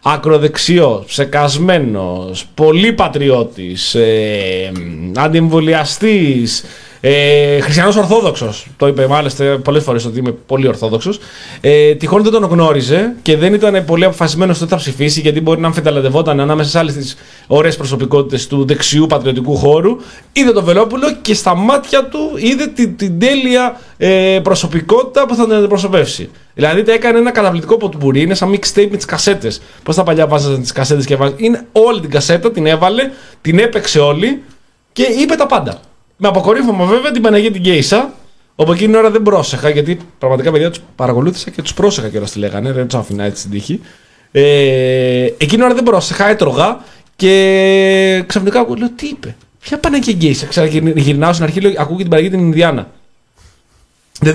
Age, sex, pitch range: 30-49, male, 140-205 Hz